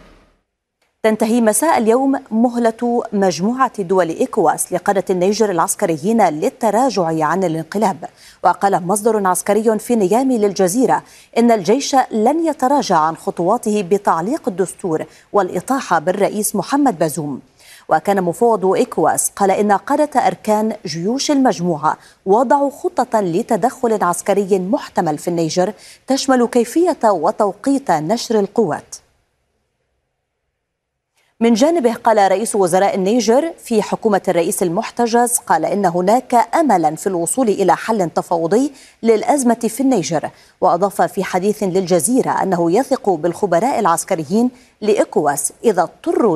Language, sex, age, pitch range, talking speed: Arabic, female, 30-49, 185-235 Hz, 110 wpm